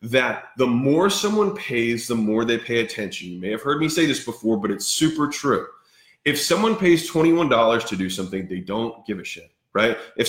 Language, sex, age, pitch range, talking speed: English, male, 20-39, 110-145 Hz, 210 wpm